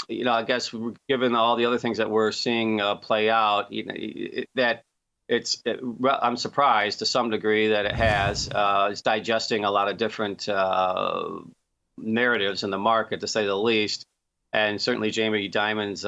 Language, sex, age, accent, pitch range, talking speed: English, male, 40-59, American, 110-125 Hz, 170 wpm